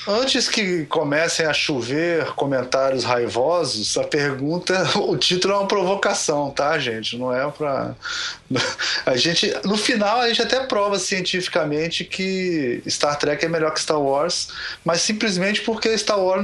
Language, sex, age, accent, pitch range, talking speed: Portuguese, male, 20-39, Brazilian, 140-190 Hz, 150 wpm